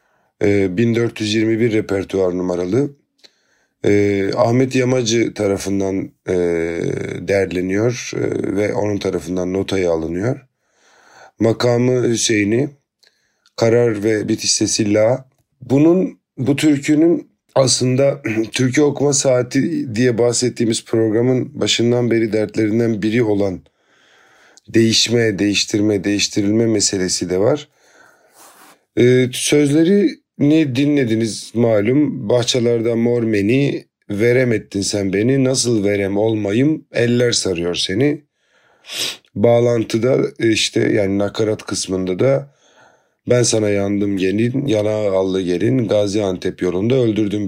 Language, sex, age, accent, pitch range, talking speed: Turkish, male, 40-59, native, 100-125 Hz, 95 wpm